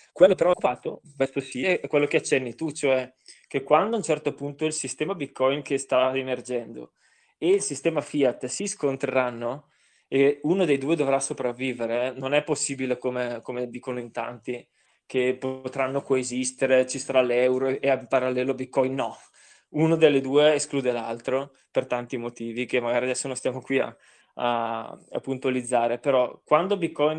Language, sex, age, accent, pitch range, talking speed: Italian, male, 20-39, native, 125-145 Hz, 165 wpm